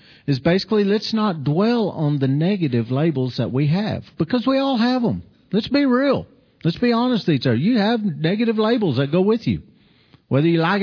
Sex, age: male, 50-69